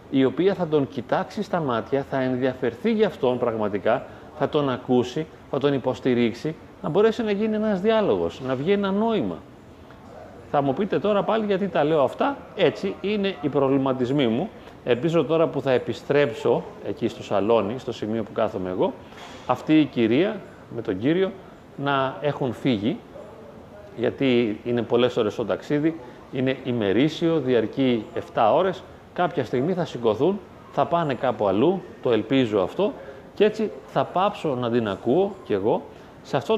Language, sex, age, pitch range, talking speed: Greek, male, 30-49, 120-190 Hz, 160 wpm